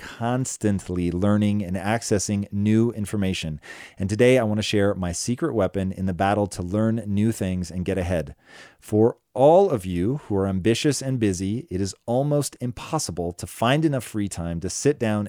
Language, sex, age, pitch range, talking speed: English, male, 30-49, 95-120 Hz, 180 wpm